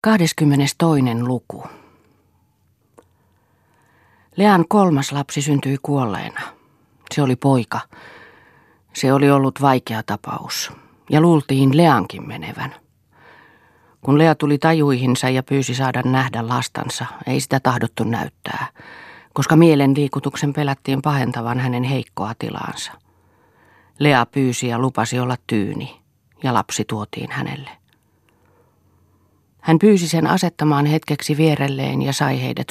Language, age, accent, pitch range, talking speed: Finnish, 40-59, native, 120-145 Hz, 110 wpm